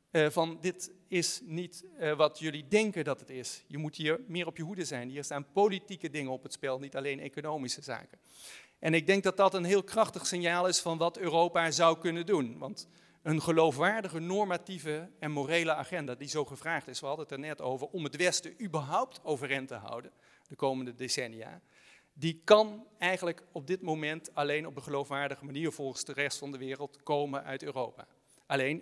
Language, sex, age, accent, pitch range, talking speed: Dutch, male, 40-59, Dutch, 145-180 Hz, 195 wpm